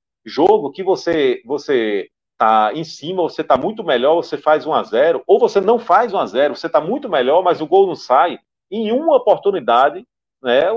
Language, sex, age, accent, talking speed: Portuguese, male, 40-59, Brazilian, 205 wpm